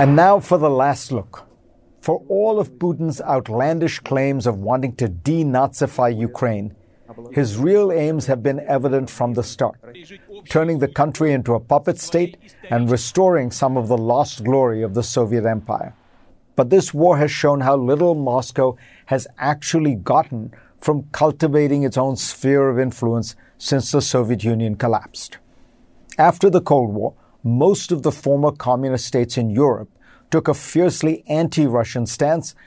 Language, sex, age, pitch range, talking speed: English, male, 50-69, 120-155 Hz, 155 wpm